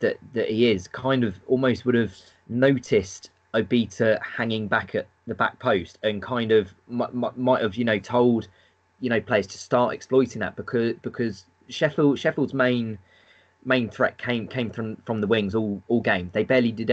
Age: 20-39